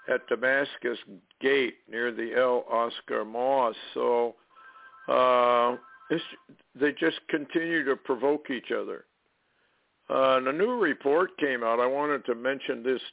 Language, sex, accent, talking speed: English, male, American, 135 wpm